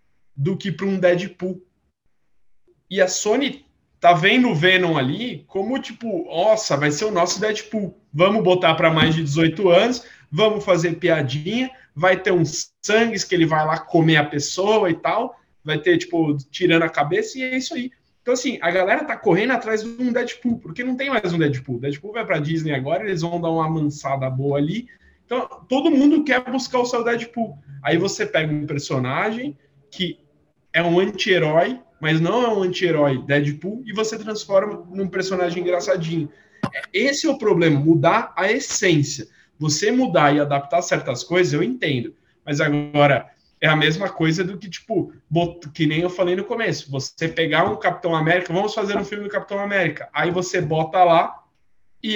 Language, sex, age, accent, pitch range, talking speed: Portuguese, male, 20-39, Brazilian, 155-215 Hz, 185 wpm